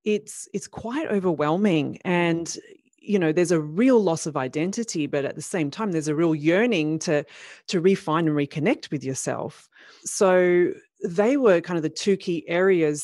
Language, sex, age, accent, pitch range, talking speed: English, female, 30-49, Australian, 150-185 Hz, 175 wpm